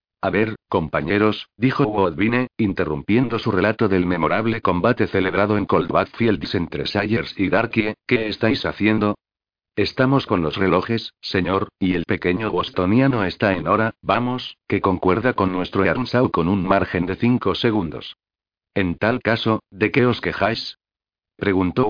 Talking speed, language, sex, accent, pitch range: 150 wpm, Spanish, male, Spanish, 95-115 Hz